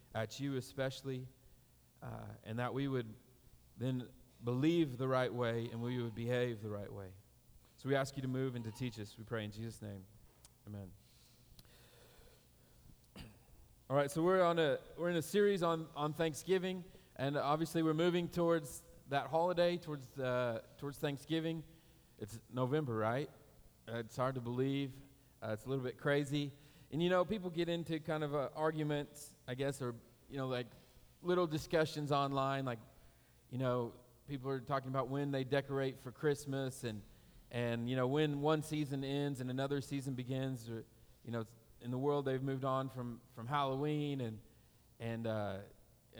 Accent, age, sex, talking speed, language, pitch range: American, 40-59, male, 175 wpm, English, 115-145 Hz